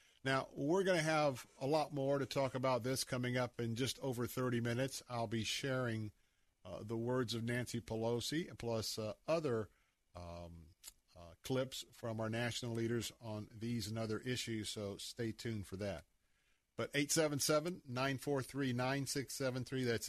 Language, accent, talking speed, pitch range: English, American, 150 wpm, 105-140 Hz